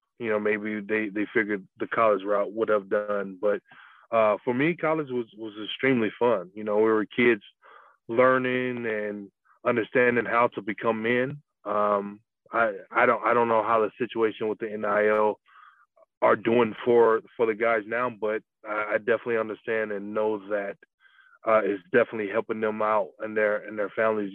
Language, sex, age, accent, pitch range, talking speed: English, male, 20-39, American, 105-115 Hz, 175 wpm